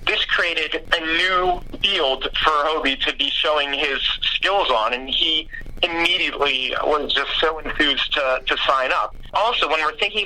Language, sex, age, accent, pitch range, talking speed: English, male, 40-59, American, 135-165 Hz, 165 wpm